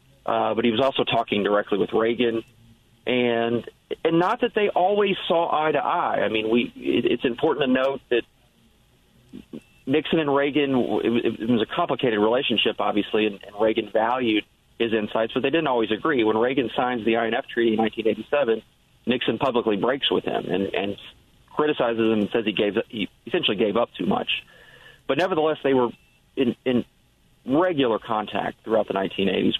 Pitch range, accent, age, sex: 115-135 Hz, American, 40-59, male